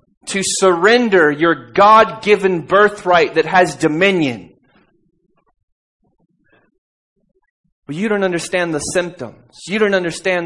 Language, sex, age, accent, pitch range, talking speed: English, male, 30-49, American, 135-180 Hz, 100 wpm